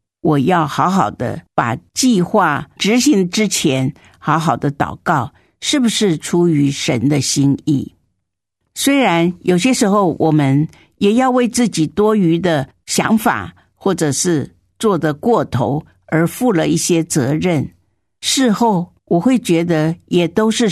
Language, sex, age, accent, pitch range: Chinese, female, 50-69, American, 145-200 Hz